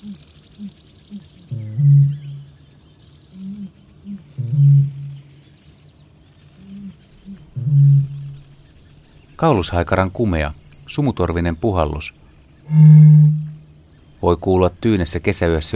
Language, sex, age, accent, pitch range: Finnish, male, 60-79, native, 85-140 Hz